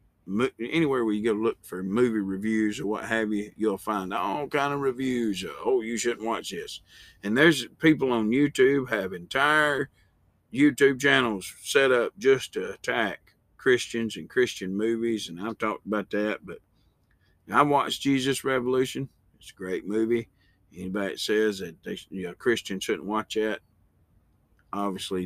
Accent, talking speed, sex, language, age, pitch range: American, 165 wpm, male, English, 50-69, 100-125 Hz